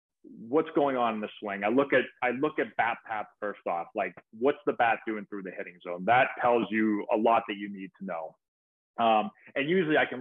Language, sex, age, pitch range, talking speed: English, male, 30-49, 110-140 Hz, 235 wpm